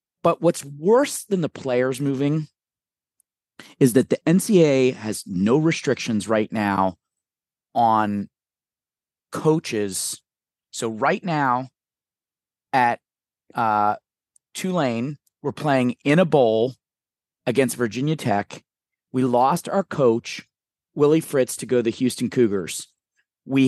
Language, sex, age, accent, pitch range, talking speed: English, male, 30-49, American, 120-160 Hz, 115 wpm